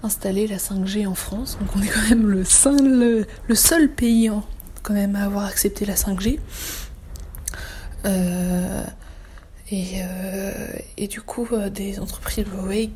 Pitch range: 195-225 Hz